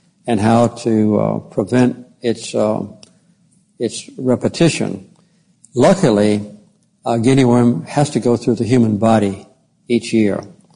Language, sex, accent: English, male, American